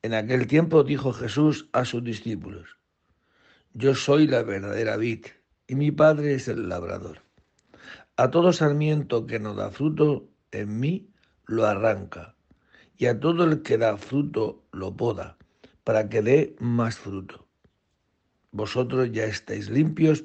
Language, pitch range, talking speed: Spanish, 105-140 Hz, 140 wpm